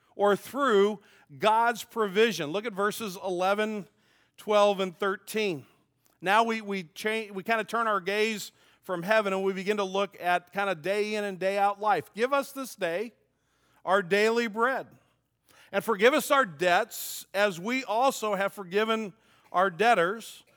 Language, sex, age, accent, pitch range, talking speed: English, male, 50-69, American, 170-215 Hz, 165 wpm